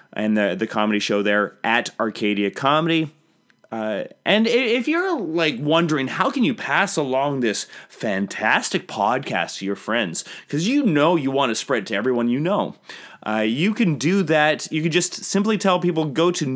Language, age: English, 30-49